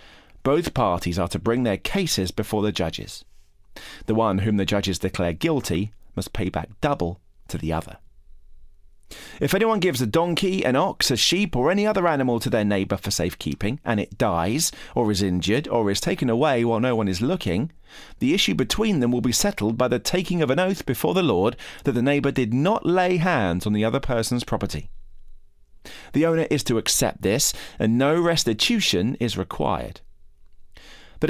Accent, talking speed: British, 185 wpm